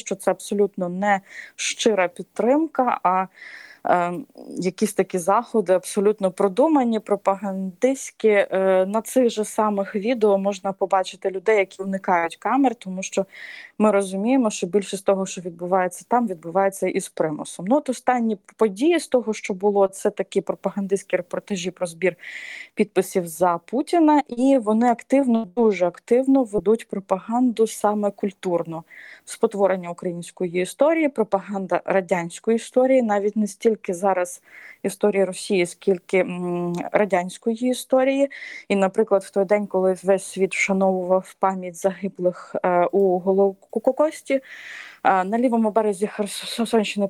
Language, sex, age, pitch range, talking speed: Ukrainian, female, 20-39, 185-230 Hz, 130 wpm